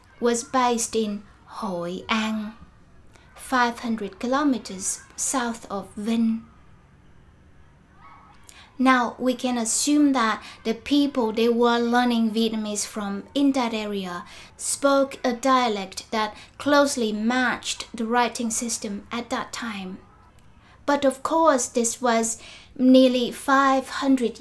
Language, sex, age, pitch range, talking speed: Vietnamese, female, 20-39, 215-255 Hz, 110 wpm